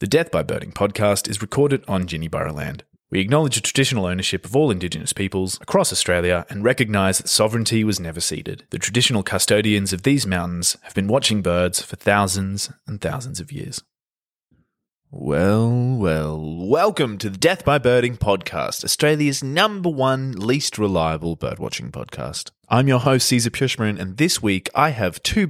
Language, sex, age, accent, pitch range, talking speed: English, male, 20-39, Australian, 90-130 Hz, 170 wpm